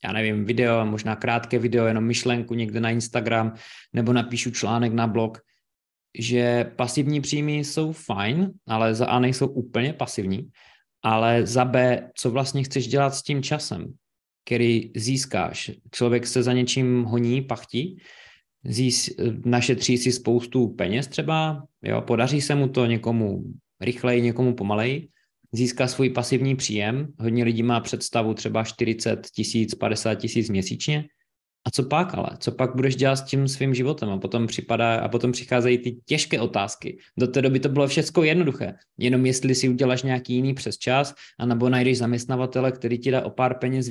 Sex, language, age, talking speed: male, Czech, 20-39, 160 wpm